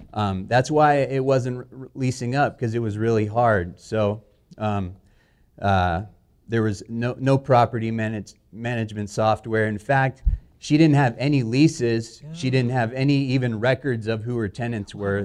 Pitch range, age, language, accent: 110-130 Hz, 30-49, English, American